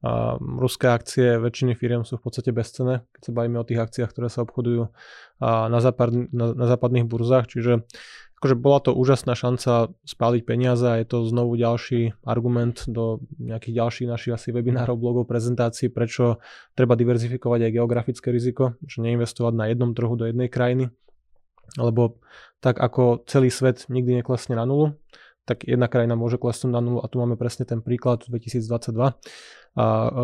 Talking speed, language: 170 wpm, Slovak